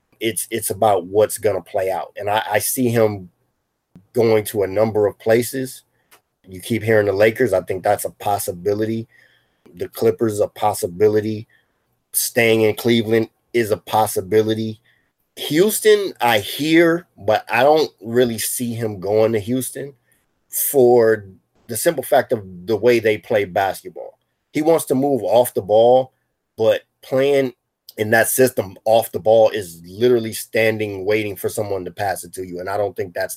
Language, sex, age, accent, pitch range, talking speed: English, male, 30-49, American, 110-130 Hz, 165 wpm